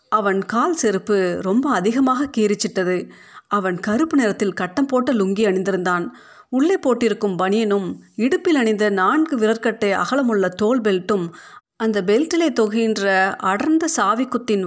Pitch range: 190-250 Hz